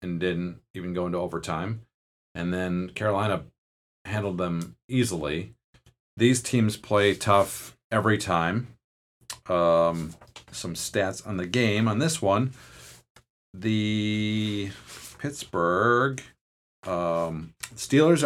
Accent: American